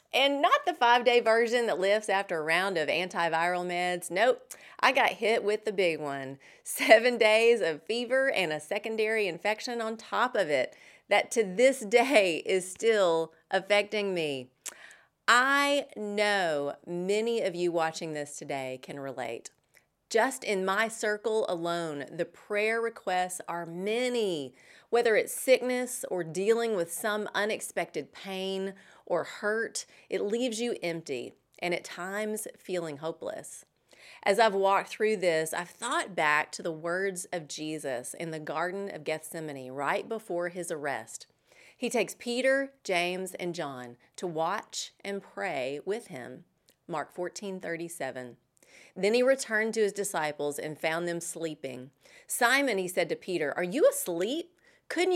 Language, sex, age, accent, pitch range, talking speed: English, female, 30-49, American, 170-230 Hz, 150 wpm